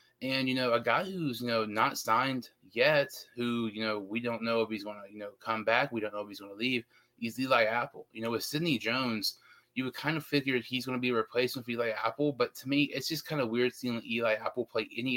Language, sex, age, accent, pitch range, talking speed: English, male, 20-39, American, 110-125 Hz, 270 wpm